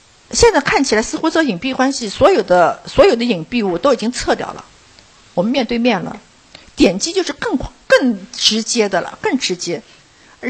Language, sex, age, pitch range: Chinese, female, 50-69, 205-285 Hz